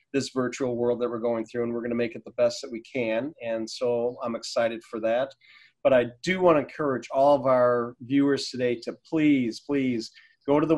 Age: 40-59